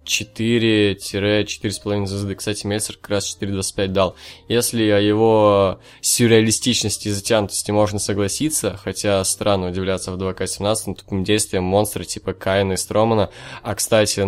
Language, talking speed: Russian, 130 wpm